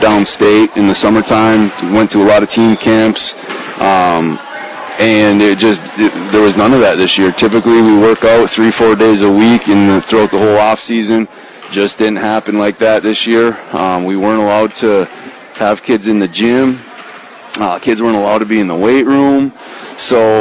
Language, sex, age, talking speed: English, male, 30-49, 190 wpm